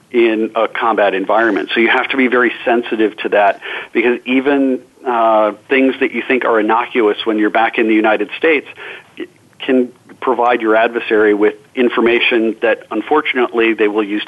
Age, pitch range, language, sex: 50-69, 110-135 Hz, English, male